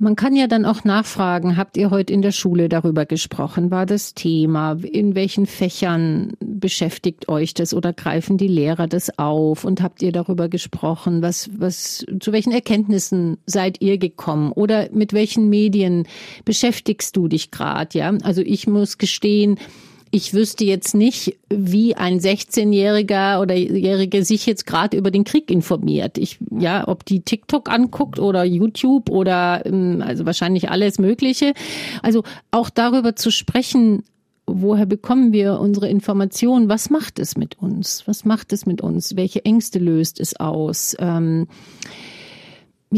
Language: German